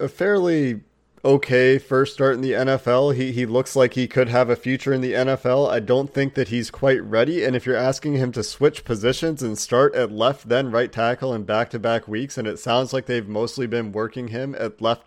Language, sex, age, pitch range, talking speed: English, male, 30-49, 115-135 Hz, 230 wpm